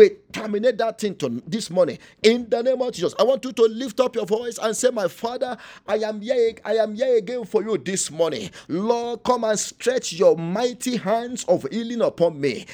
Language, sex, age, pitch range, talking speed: English, male, 50-69, 215-255 Hz, 200 wpm